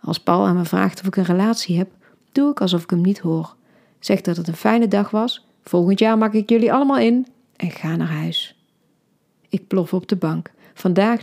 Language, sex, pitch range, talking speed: Dutch, female, 185-250 Hz, 220 wpm